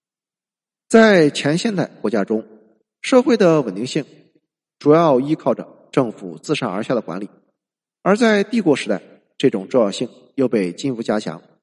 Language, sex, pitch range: Chinese, male, 125-200 Hz